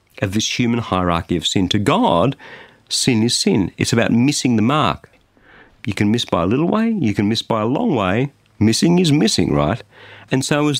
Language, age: English, 50-69